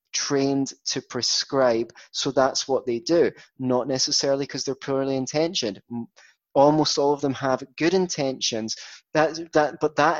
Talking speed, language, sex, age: 145 wpm, English, male, 20-39